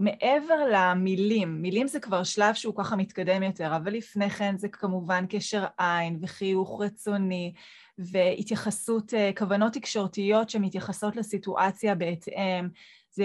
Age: 20-39